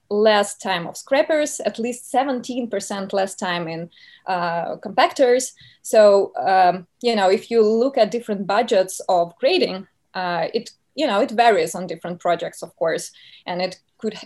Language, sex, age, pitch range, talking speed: English, female, 20-39, 190-240 Hz, 160 wpm